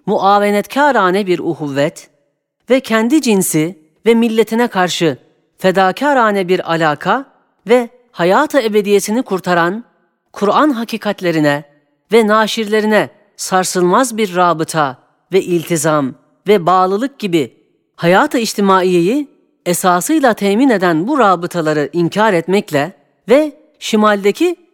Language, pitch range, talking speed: Turkish, 165-225 Hz, 95 wpm